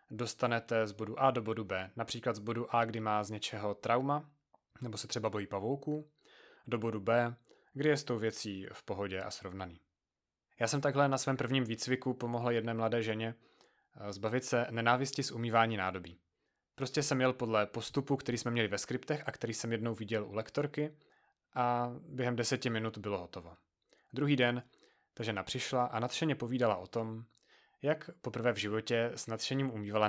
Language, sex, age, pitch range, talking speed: Czech, male, 30-49, 110-130 Hz, 180 wpm